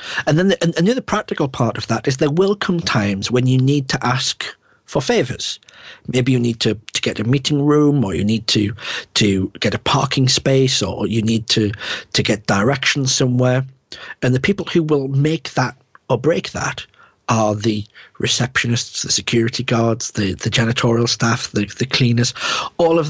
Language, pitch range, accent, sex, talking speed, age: English, 115-135 Hz, British, male, 190 wpm, 40-59